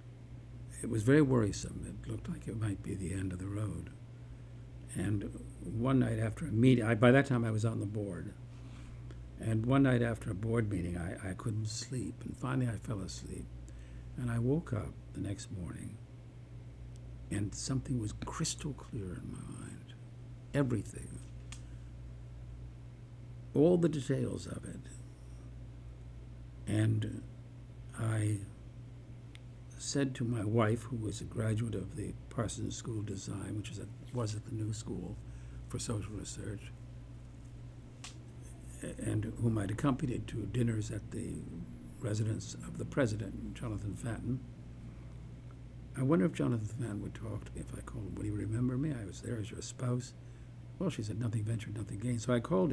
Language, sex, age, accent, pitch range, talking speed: English, male, 60-79, American, 105-120 Hz, 160 wpm